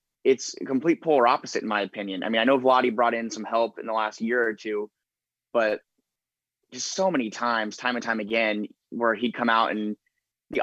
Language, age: English, 20-39